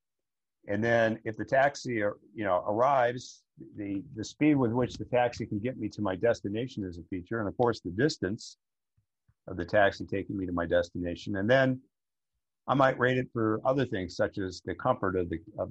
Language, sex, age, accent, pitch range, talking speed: English, male, 50-69, American, 90-115 Hz, 205 wpm